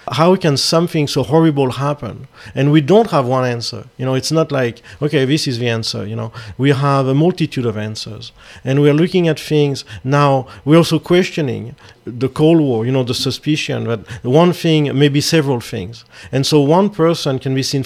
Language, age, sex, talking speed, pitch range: English, 40-59, male, 200 wpm, 120-155 Hz